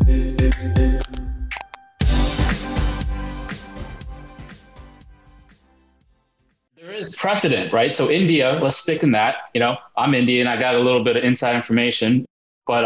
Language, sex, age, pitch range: English, male, 30-49, 120-155 Hz